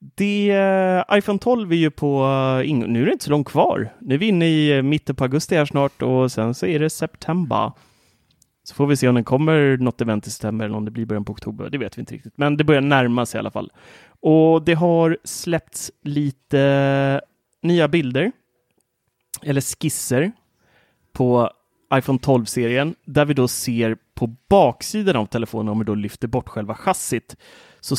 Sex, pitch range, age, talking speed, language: male, 115-155 Hz, 30-49, 185 wpm, Swedish